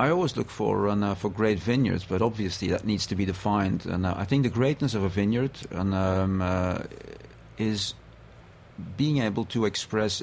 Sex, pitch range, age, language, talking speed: male, 95-115 Hz, 40-59, English, 190 wpm